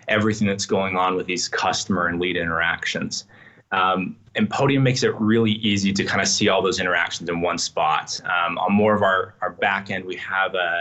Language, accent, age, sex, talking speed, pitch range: English, American, 20-39, male, 210 wpm, 95-110 Hz